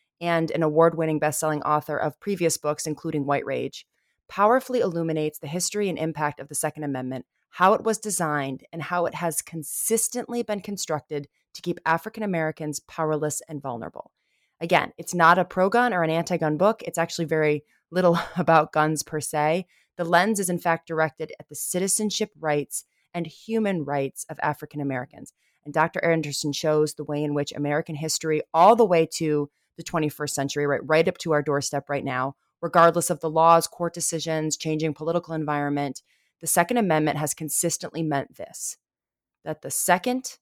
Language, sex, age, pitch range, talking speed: English, female, 20-39, 150-175 Hz, 170 wpm